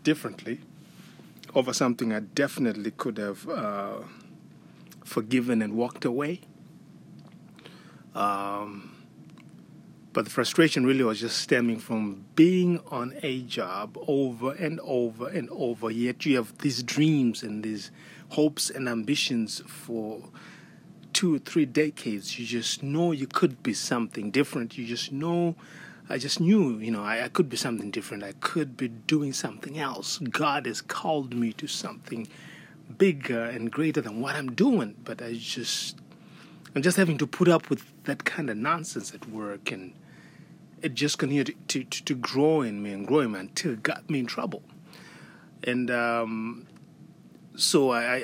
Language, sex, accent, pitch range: English, male, Nigerian, 115-155 Hz